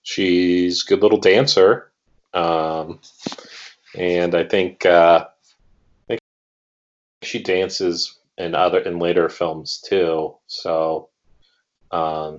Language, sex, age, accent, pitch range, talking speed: English, male, 30-49, American, 85-105 Hz, 105 wpm